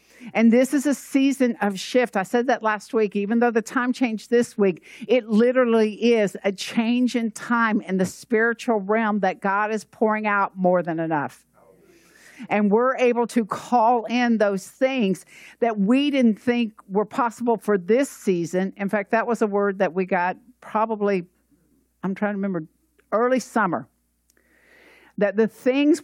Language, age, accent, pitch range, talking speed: English, 50-69, American, 195-240 Hz, 170 wpm